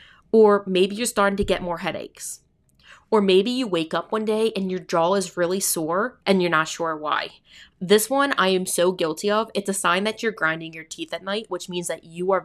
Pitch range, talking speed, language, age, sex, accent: 170-210 Hz, 230 wpm, English, 20-39, female, American